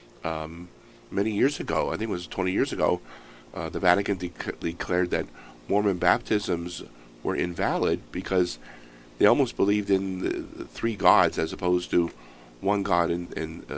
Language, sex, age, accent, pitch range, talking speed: English, male, 50-69, American, 80-100 Hz, 160 wpm